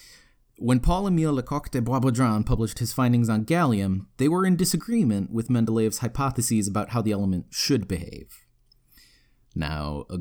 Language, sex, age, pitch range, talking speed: English, male, 30-49, 105-140 Hz, 145 wpm